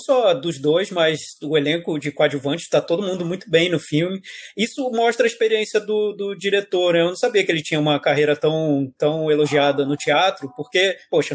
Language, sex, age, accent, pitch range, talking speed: Portuguese, male, 20-39, Brazilian, 160-215 Hz, 205 wpm